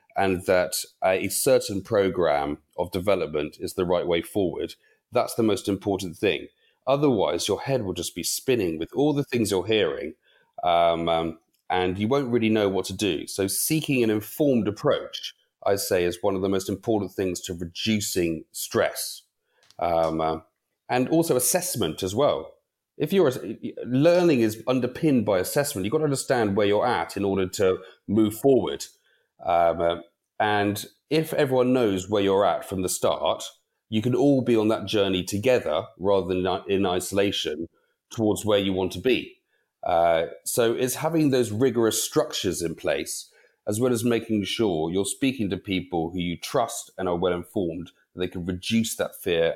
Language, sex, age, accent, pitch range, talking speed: English, male, 30-49, British, 95-130 Hz, 170 wpm